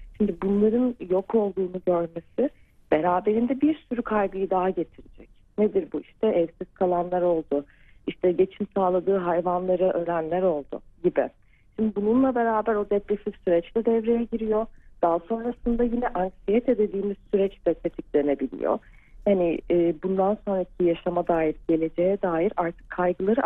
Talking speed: 130 wpm